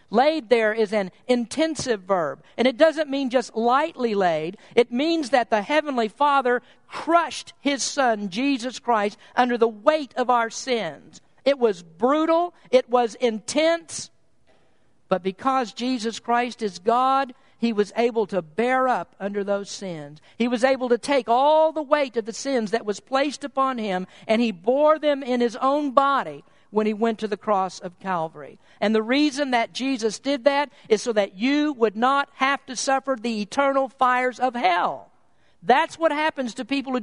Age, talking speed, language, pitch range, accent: 50-69, 180 wpm, English, 230-285 Hz, American